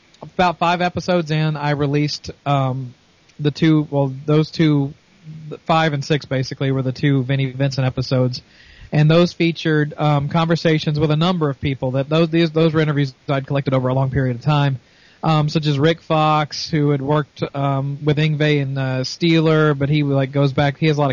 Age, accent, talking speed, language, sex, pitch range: 40-59, American, 195 wpm, English, male, 140-160 Hz